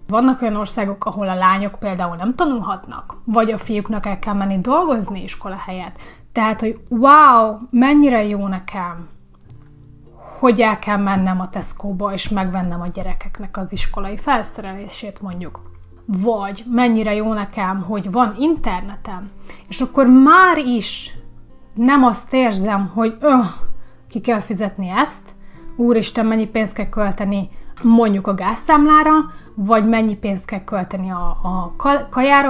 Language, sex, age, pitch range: Hungarian, female, 30-49, 195-240 Hz